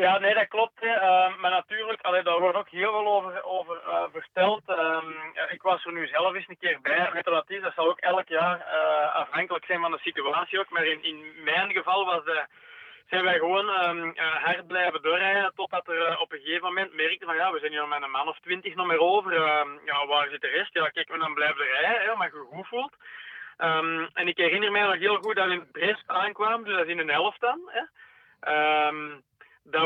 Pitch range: 160-190 Hz